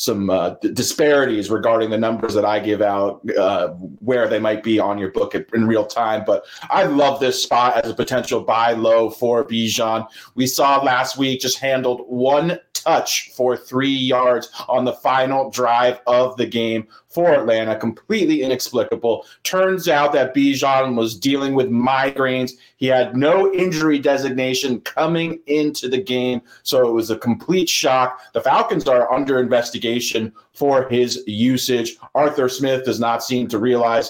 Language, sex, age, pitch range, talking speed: English, male, 30-49, 125-145 Hz, 165 wpm